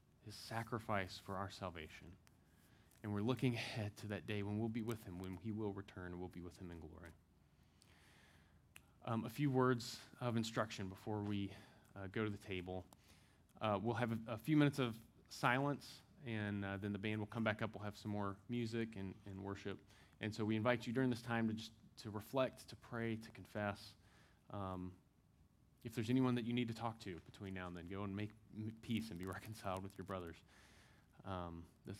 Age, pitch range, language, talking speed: 20-39, 95-120 Hz, English, 205 wpm